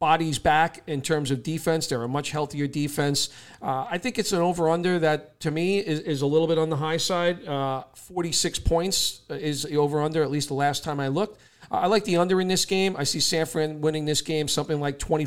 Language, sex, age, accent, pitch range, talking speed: English, male, 40-59, American, 145-170 Hz, 230 wpm